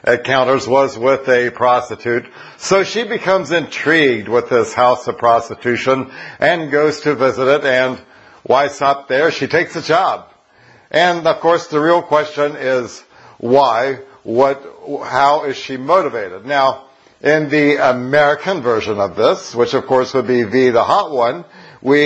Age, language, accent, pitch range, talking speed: 60-79, English, American, 125-150 Hz, 160 wpm